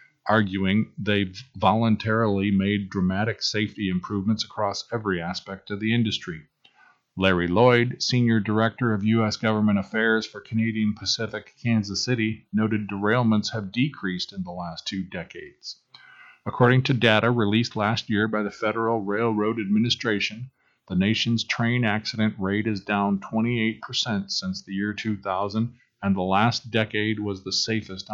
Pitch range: 100-120 Hz